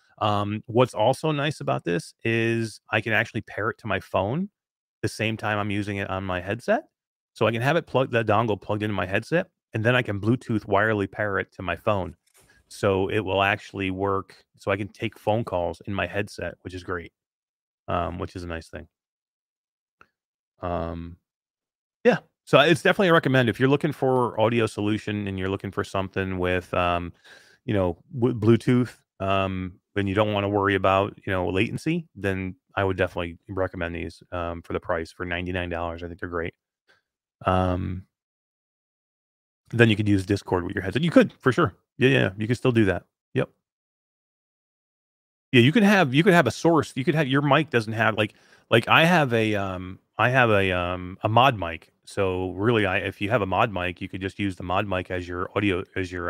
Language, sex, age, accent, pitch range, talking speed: English, male, 30-49, American, 90-115 Hz, 205 wpm